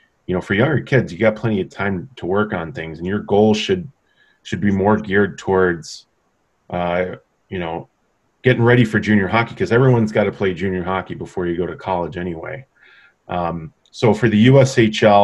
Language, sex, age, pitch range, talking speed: English, male, 30-49, 90-105 Hz, 195 wpm